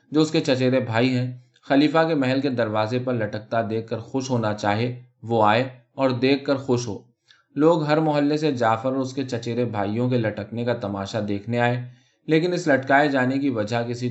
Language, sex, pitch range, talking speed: Urdu, male, 115-140 Hz, 205 wpm